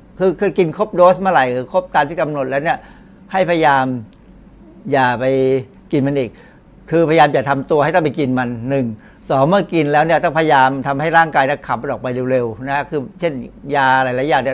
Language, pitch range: Thai, 130-160 Hz